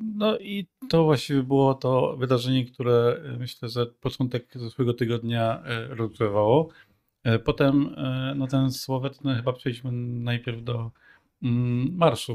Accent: native